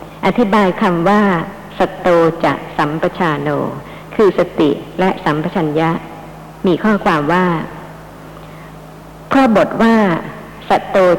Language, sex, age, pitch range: Thai, male, 60-79, 160-200 Hz